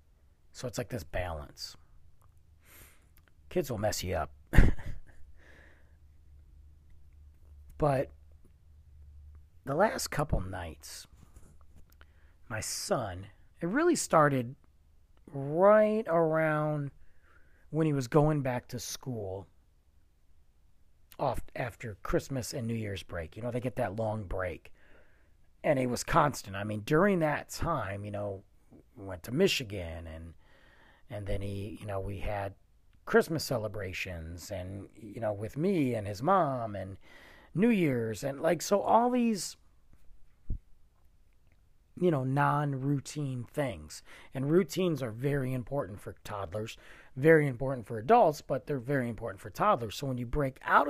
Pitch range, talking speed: 80-130 Hz, 130 wpm